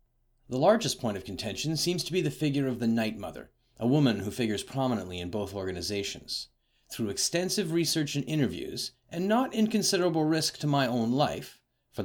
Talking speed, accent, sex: 180 wpm, American, male